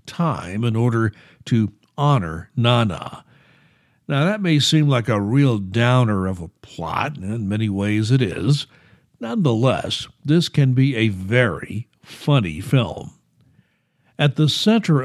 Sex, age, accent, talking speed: male, 60-79, American, 135 wpm